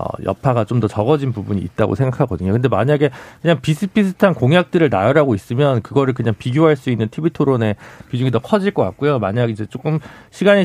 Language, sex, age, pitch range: Korean, male, 40-59, 115-170 Hz